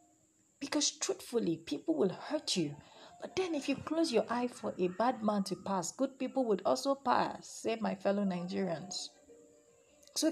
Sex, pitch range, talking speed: female, 190-285 Hz, 170 wpm